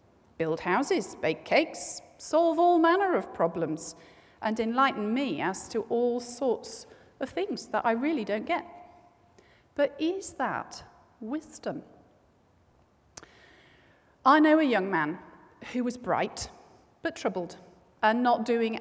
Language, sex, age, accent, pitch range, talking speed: English, female, 40-59, British, 190-285 Hz, 130 wpm